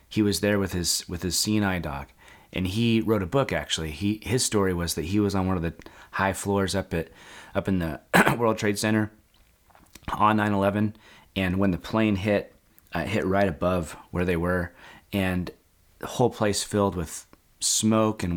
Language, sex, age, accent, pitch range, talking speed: English, male, 30-49, American, 85-105 Hz, 190 wpm